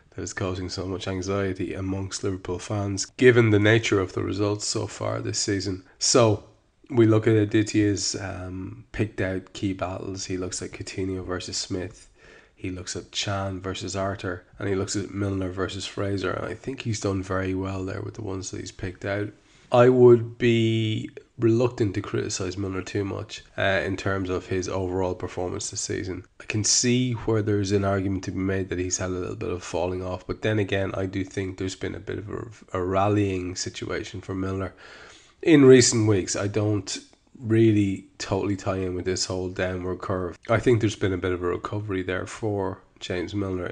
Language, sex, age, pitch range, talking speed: English, male, 20-39, 95-105 Hz, 195 wpm